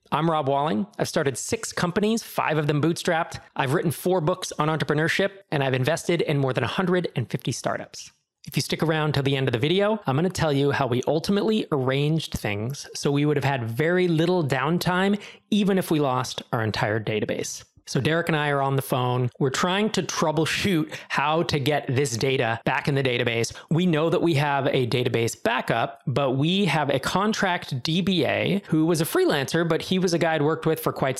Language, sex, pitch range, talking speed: English, male, 135-170 Hz, 210 wpm